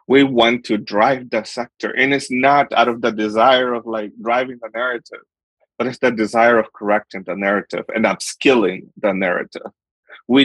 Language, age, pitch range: English, 20-39, 110-140 Hz